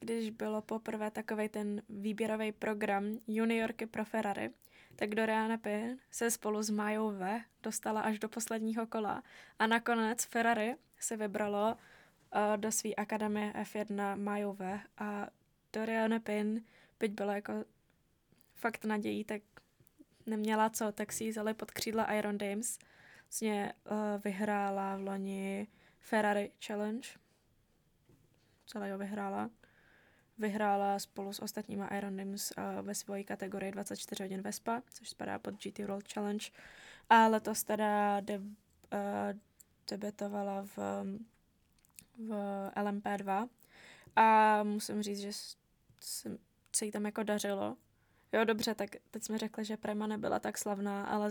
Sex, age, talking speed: female, 10-29, 125 wpm